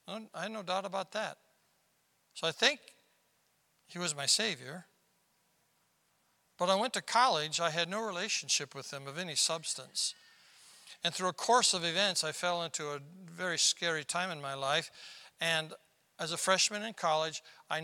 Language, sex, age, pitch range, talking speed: English, male, 60-79, 155-215 Hz, 170 wpm